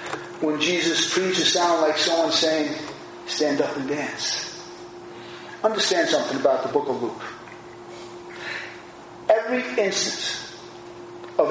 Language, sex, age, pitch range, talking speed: English, male, 40-59, 155-180 Hz, 110 wpm